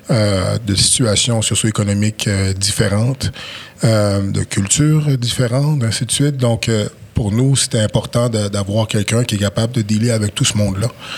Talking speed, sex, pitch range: 165 wpm, male, 105-120 Hz